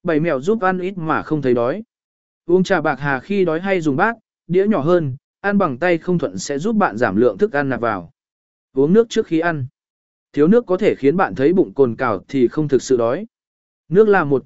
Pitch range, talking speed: 145-200 Hz, 240 wpm